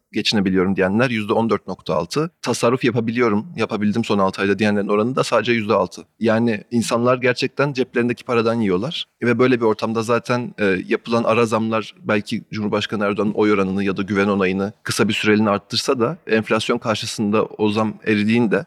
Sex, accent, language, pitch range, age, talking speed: male, native, Turkish, 105-120 Hz, 30-49, 160 wpm